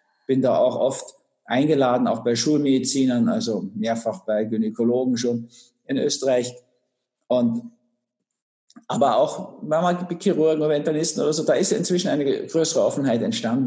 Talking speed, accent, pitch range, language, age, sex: 135 wpm, German, 120-150 Hz, German, 50-69, male